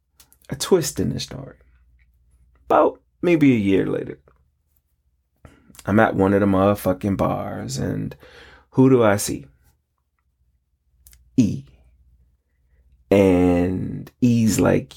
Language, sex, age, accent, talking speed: English, male, 30-49, American, 105 wpm